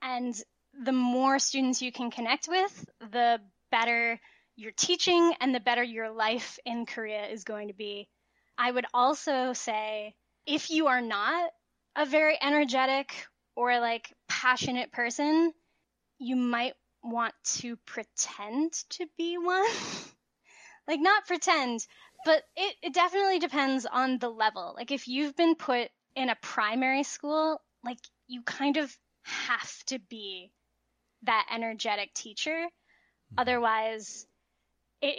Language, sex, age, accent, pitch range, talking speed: English, female, 10-29, American, 230-295 Hz, 135 wpm